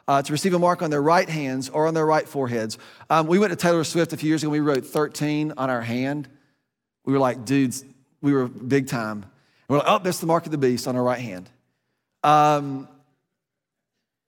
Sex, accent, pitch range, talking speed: male, American, 140-190 Hz, 225 wpm